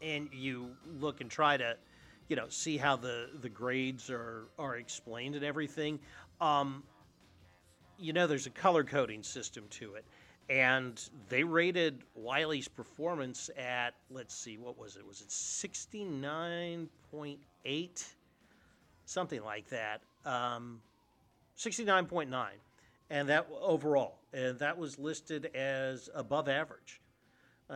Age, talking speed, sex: 40-59, 125 wpm, male